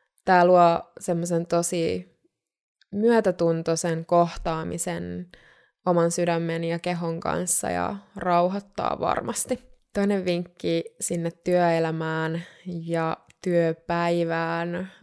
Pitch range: 165-190 Hz